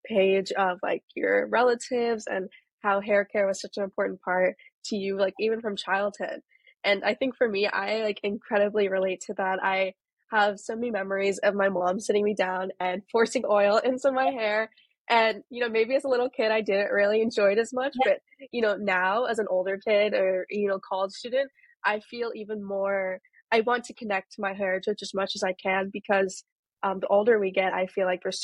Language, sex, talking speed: English, female, 215 wpm